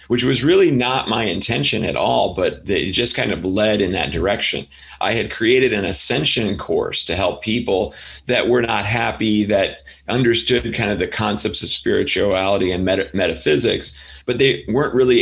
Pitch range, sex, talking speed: 95-120 Hz, male, 175 wpm